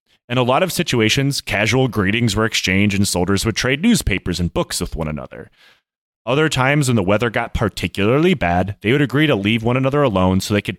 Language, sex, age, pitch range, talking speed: English, male, 30-49, 95-130 Hz, 210 wpm